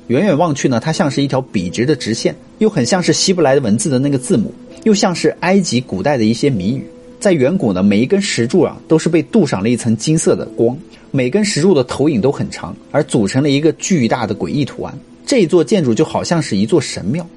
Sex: male